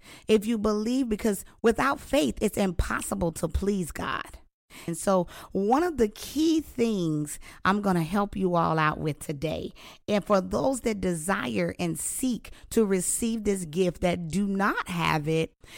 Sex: female